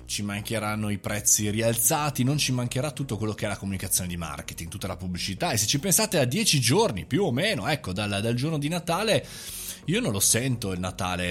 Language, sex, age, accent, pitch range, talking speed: Italian, male, 20-39, native, 100-140 Hz, 220 wpm